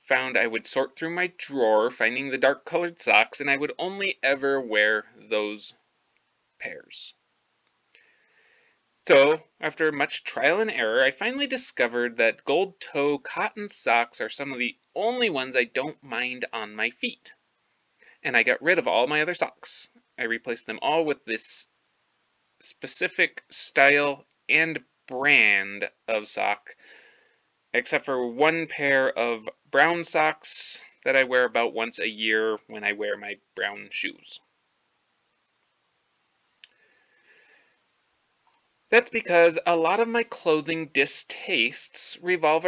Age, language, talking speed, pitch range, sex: 20-39, English, 135 wpm, 125-195 Hz, male